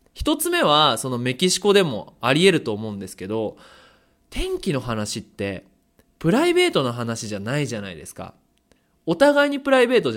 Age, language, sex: 20-39, Japanese, male